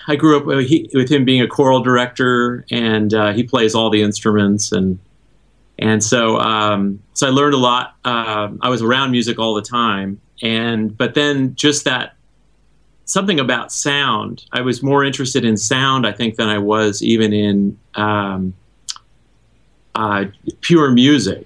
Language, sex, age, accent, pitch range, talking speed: English, male, 30-49, American, 110-130 Hz, 170 wpm